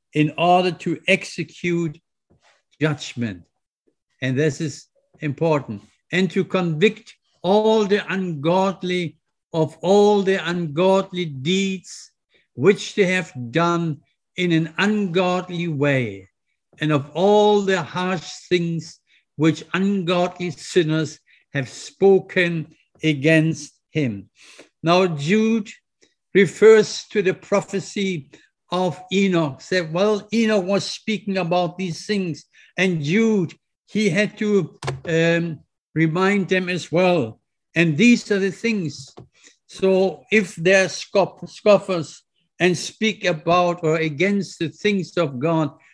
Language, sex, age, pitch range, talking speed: English, male, 60-79, 160-195 Hz, 110 wpm